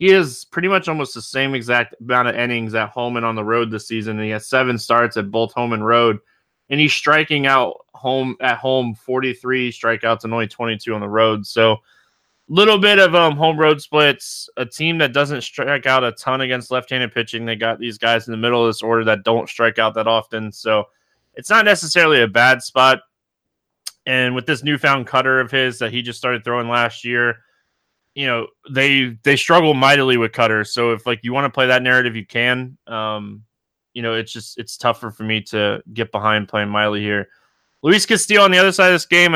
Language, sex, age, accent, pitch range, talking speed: English, male, 20-39, American, 115-140 Hz, 220 wpm